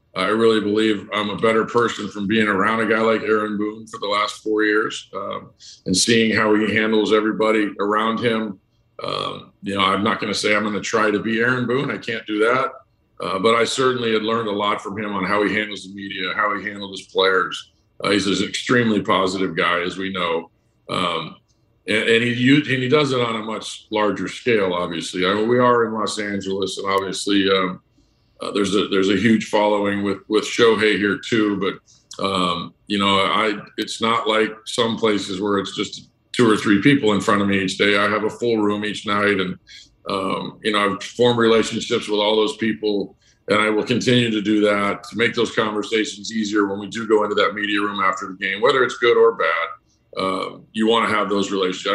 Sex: male